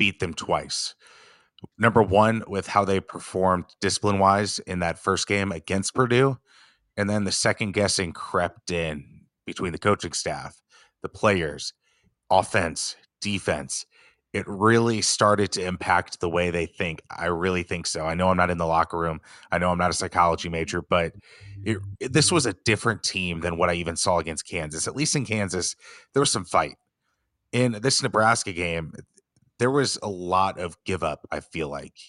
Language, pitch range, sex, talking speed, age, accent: English, 90-105 Hz, male, 180 wpm, 30-49, American